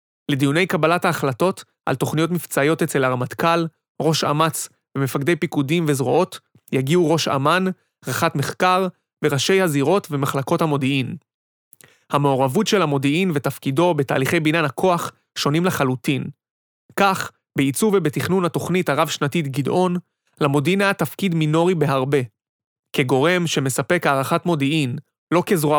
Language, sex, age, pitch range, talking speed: Hebrew, male, 30-49, 140-175 Hz, 110 wpm